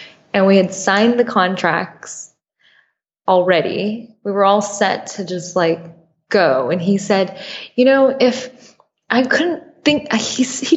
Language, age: English, 20-39